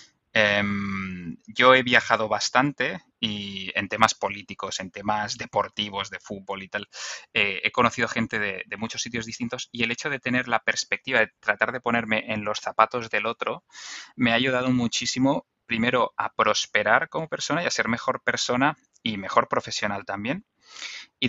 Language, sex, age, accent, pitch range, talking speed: Spanish, male, 20-39, Spanish, 105-125 Hz, 165 wpm